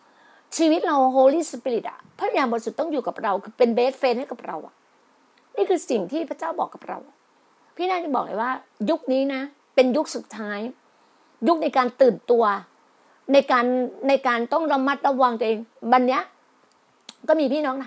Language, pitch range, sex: Thai, 245-315 Hz, female